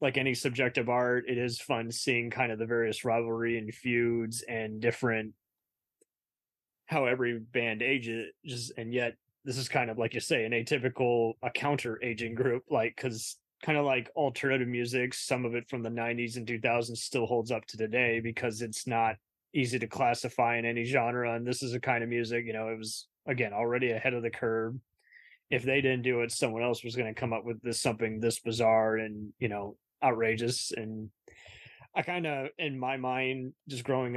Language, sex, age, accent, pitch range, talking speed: English, male, 20-39, American, 115-130 Hz, 200 wpm